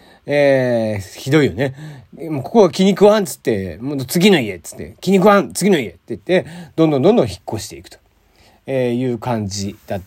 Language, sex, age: Japanese, male, 40-59